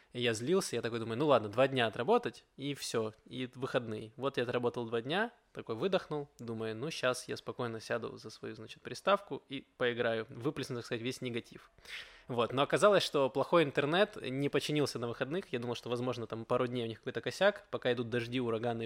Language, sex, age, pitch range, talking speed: Russian, male, 20-39, 120-150 Hz, 200 wpm